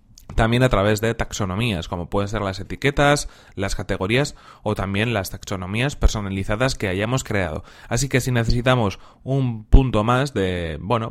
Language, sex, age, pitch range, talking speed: Spanish, male, 30-49, 100-125 Hz, 155 wpm